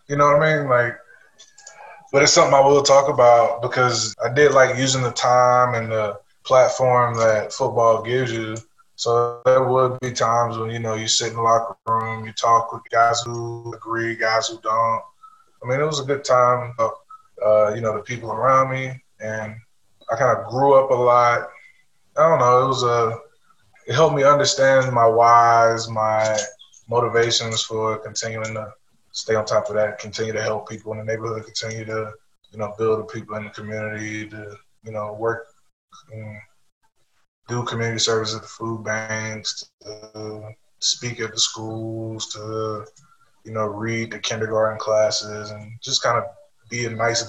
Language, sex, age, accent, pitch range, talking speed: English, male, 20-39, American, 110-125 Hz, 175 wpm